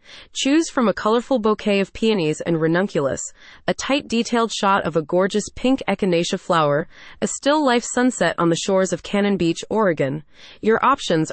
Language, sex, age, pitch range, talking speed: English, female, 30-49, 170-230 Hz, 165 wpm